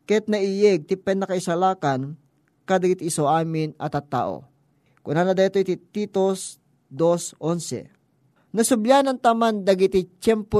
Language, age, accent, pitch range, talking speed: Filipino, 20-39, native, 155-200 Hz, 125 wpm